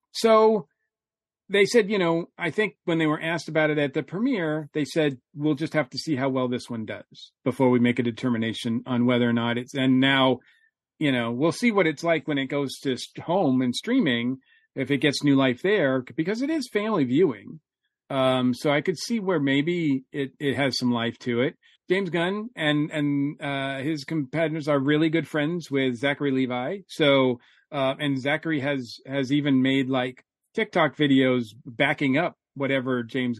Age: 40-59